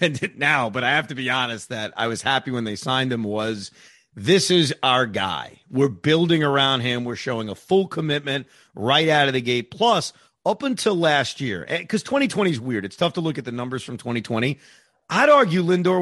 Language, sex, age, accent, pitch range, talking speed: English, male, 40-59, American, 130-180 Hz, 205 wpm